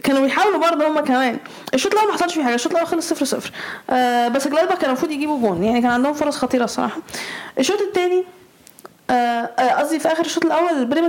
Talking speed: 200 wpm